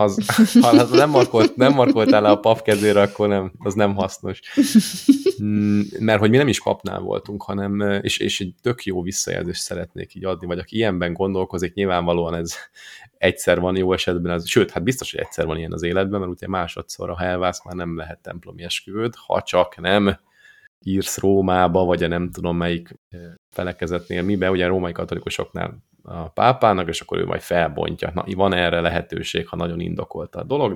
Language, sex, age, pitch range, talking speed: Hungarian, male, 30-49, 85-105 Hz, 180 wpm